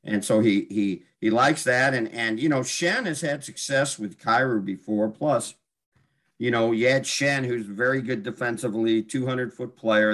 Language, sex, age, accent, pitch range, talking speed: English, male, 50-69, American, 95-125 Hz, 190 wpm